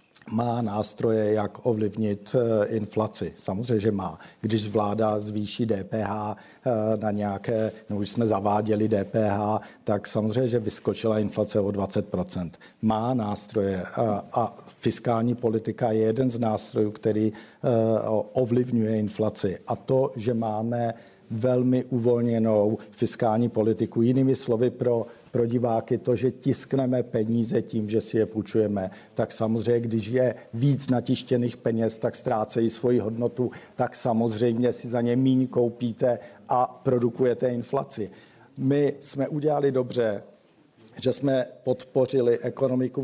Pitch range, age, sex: 110-135 Hz, 50-69, male